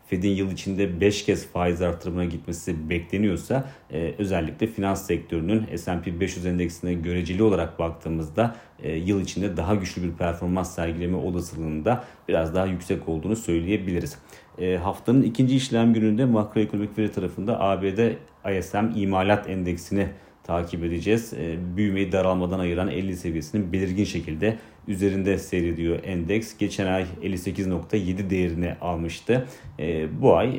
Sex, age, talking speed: male, 40-59, 130 wpm